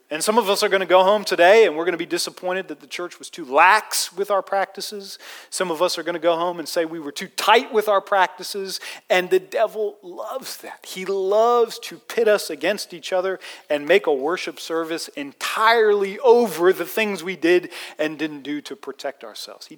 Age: 40-59